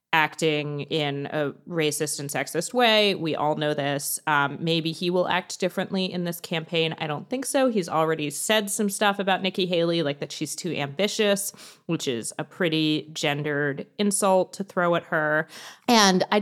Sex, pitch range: female, 150-195 Hz